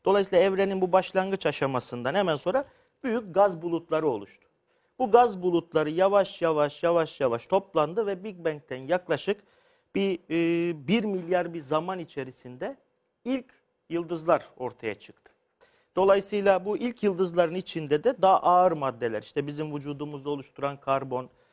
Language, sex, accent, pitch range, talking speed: Turkish, male, native, 140-205 Hz, 130 wpm